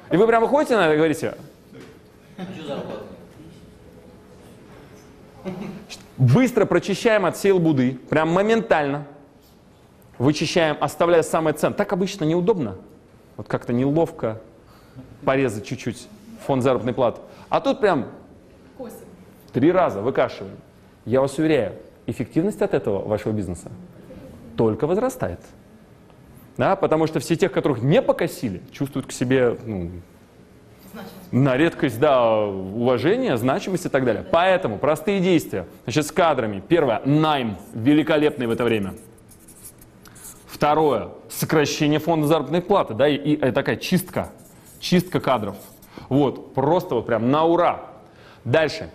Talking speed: 120 wpm